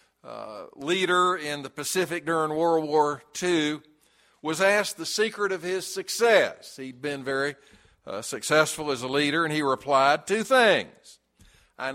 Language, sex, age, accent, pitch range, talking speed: English, male, 60-79, American, 150-185 Hz, 150 wpm